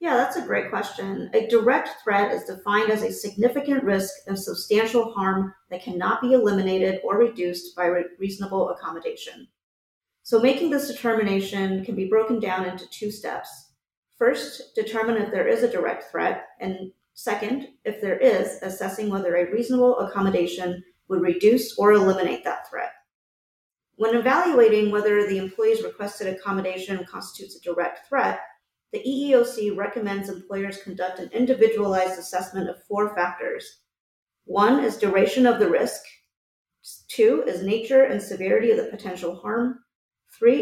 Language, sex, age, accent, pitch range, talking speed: English, female, 30-49, American, 190-250 Hz, 150 wpm